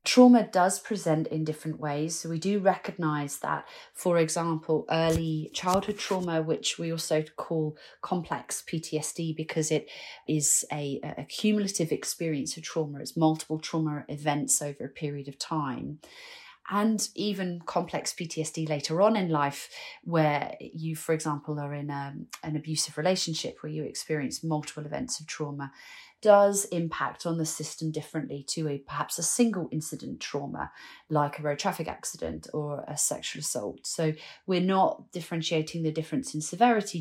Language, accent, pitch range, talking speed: English, British, 150-170 Hz, 150 wpm